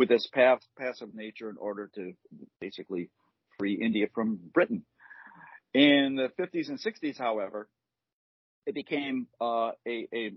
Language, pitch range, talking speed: English, 105-130 Hz, 135 wpm